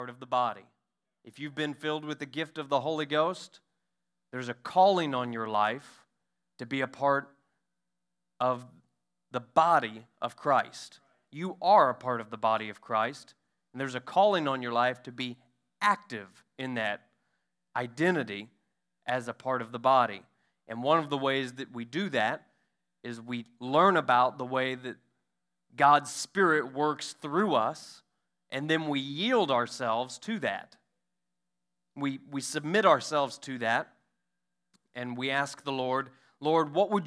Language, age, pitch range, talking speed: English, 30-49, 115-150 Hz, 160 wpm